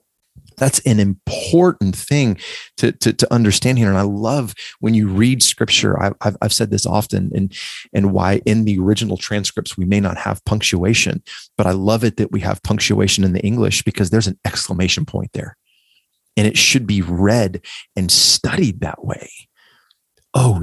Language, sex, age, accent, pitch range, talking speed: English, male, 30-49, American, 100-125 Hz, 175 wpm